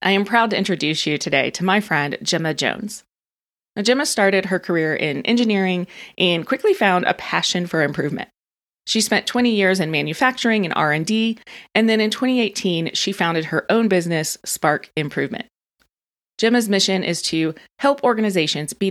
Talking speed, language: 160 wpm, English